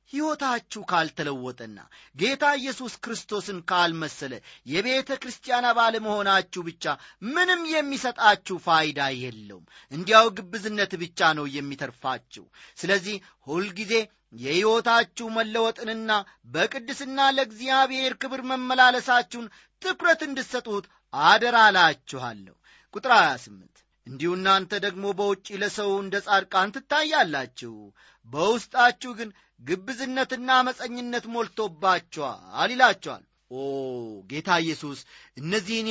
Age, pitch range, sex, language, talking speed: 40-59, 155-235 Hz, male, Amharic, 90 wpm